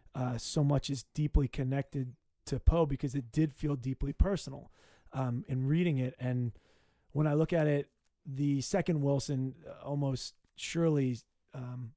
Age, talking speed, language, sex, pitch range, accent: 20-39, 150 wpm, English, male, 130-150 Hz, American